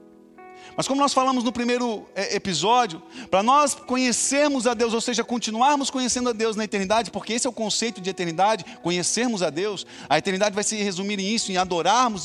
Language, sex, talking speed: Portuguese, male, 190 wpm